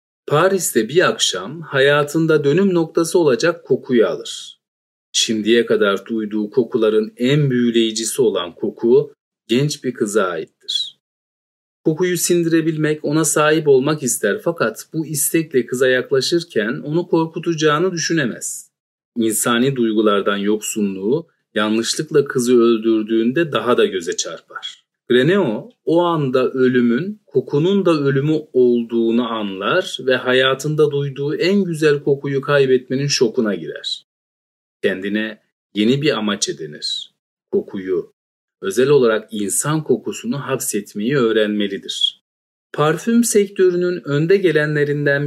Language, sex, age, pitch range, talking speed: Turkish, male, 40-59, 120-170 Hz, 105 wpm